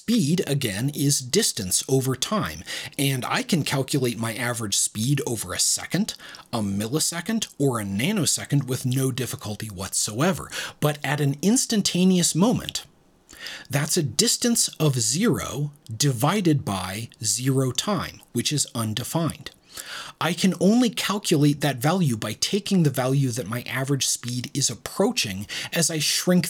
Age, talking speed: 30-49, 140 wpm